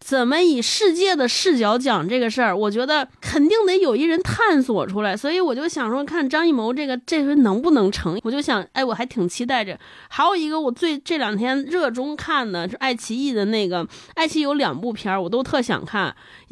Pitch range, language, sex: 215-300 Hz, Chinese, female